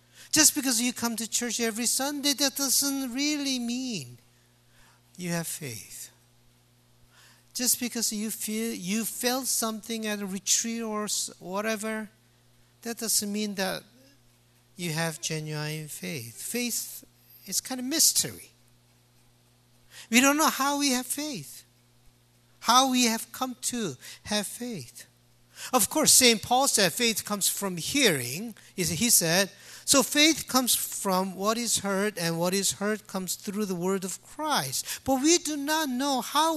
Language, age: English, 50-69